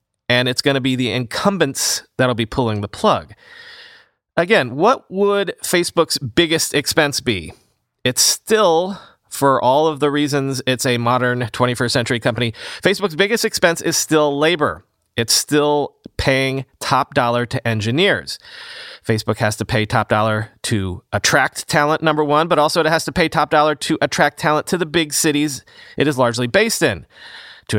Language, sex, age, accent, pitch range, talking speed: English, male, 30-49, American, 120-160 Hz, 170 wpm